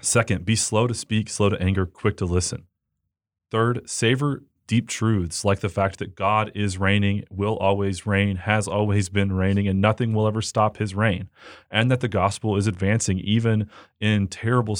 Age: 30-49